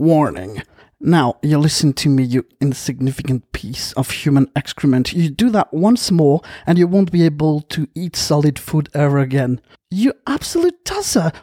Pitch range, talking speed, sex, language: 150-205 Hz, 165 wpm, male, English